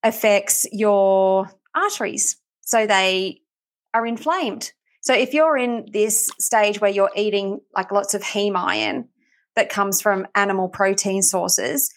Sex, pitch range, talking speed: female, 195-235 Hz, 135 wpm